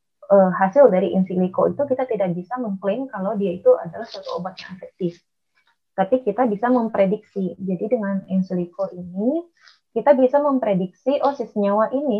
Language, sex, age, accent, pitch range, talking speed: Indonesian, female, 20-39, native, 190-245 Hz, 160 wpm